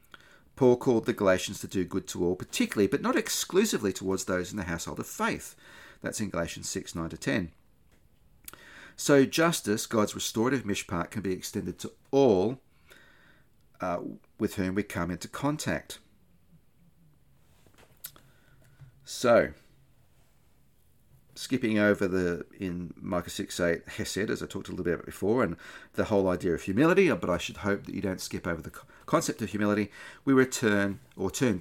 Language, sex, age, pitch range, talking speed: English, male, 40-59, 90-125 Hz, 160 wpm